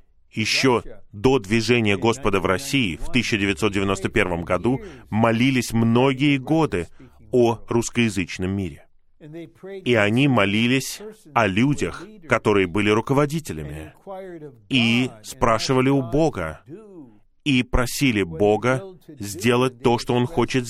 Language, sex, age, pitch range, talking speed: Russian, male, 30-49, 105-140 Hz, 100 wpm